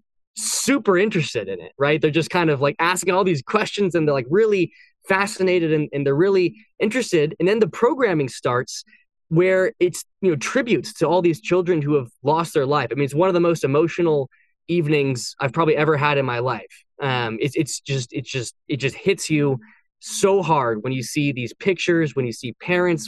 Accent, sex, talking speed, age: American, male, 210 wpm, 10-29